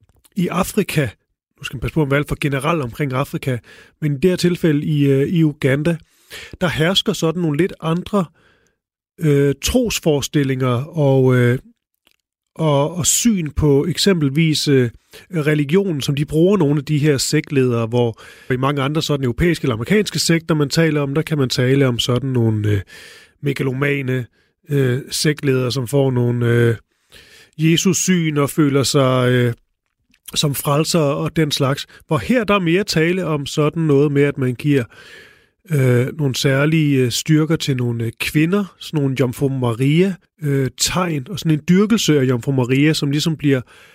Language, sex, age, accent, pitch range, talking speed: Danish, male, 30-49, native, 130-160 Hz, 165 wpm